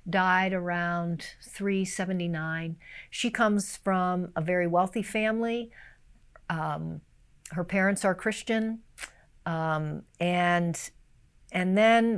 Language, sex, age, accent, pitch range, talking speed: English, female, 50-69, American, 170-210 Hz, 95 wpm